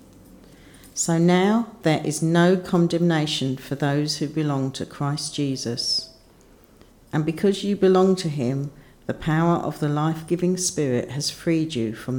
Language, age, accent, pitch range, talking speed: English, 50-69, British, 125-160 Hz, 145 wpm